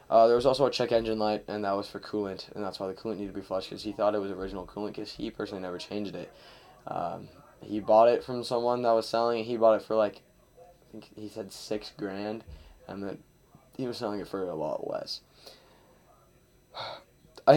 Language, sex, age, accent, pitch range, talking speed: English, male, 10-29, American, 100-120 Hz, 230 wpm